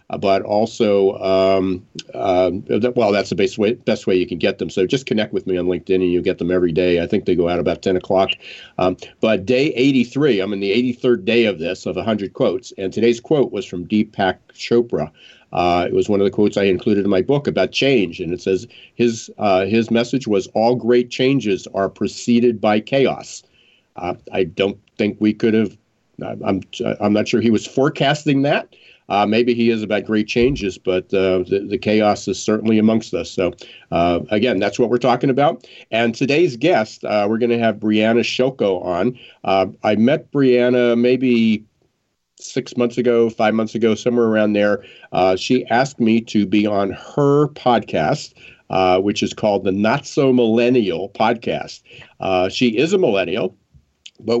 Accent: American